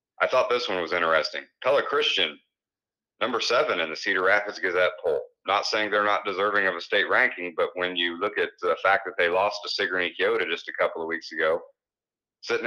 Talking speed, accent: 215 wpm, American